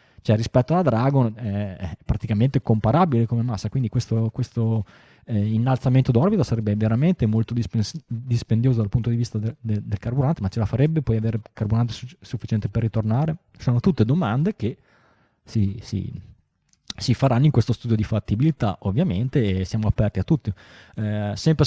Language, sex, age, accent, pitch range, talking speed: Italian, male, 20-39, native, 110-130 Hz, 170 wpm